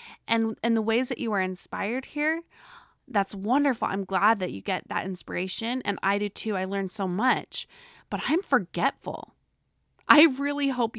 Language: English